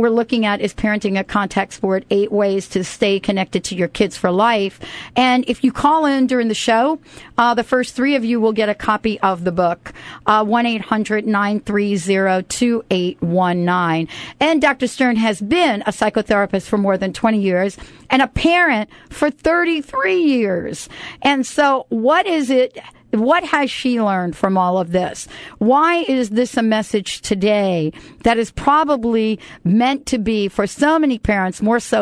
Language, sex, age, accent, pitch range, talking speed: English, female, 40-59, American, 195-250 Hz, 185 wpm